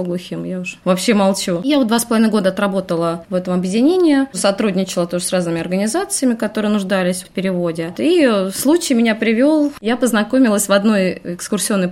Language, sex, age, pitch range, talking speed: Russian, female, 20-39, 185-225 Hz, 165 wpm